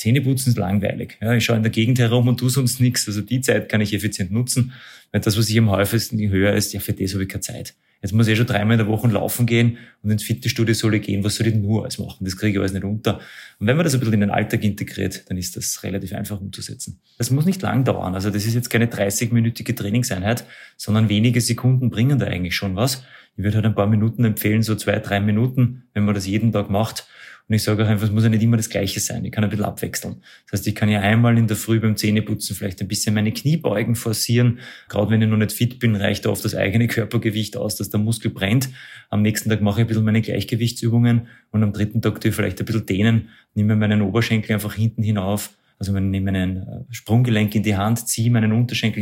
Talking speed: 250 wpm